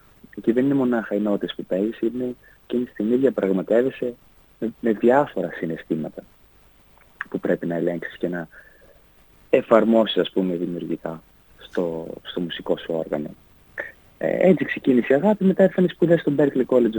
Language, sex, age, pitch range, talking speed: Greek, male, 30-49, 100-130 Hz, 150 wpm